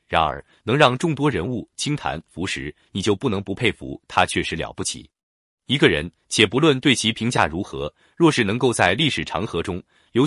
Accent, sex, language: native, male, Chinese